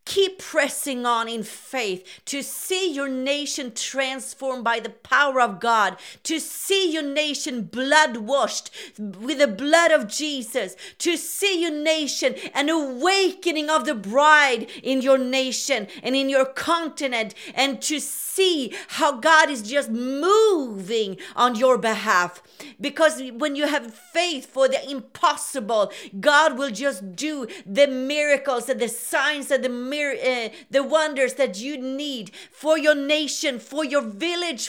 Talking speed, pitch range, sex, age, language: 145 wpm, 260-330 Hz, female, 40-59, English